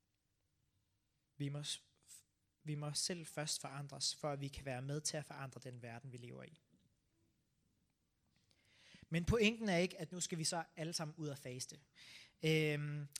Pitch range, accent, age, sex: 150-190 Hz, native, 20-39, male